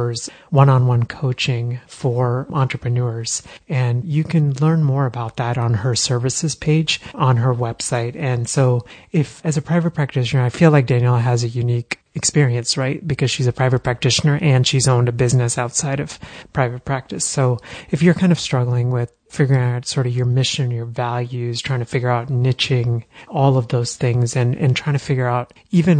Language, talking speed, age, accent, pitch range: English, 180 wpm, 30-49, American, 120-140 Hz